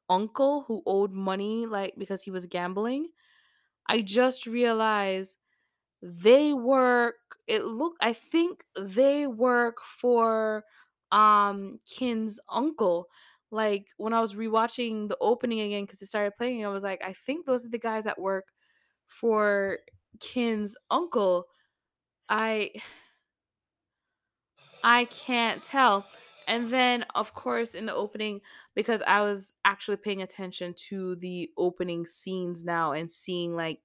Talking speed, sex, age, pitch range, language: 135 wpm, female, 20-39, 180-230 Hz, English